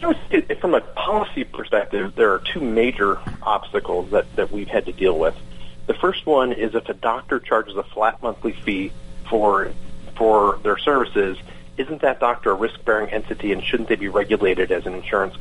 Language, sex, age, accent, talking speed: English, male, 40-59, American, 180 wpm